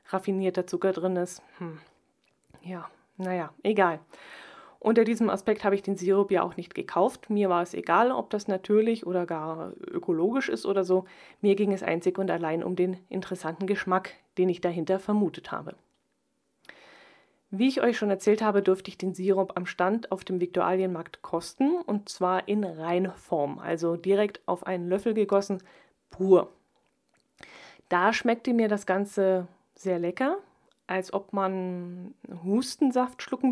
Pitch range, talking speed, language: 185-210 Hz, 155 wpm, German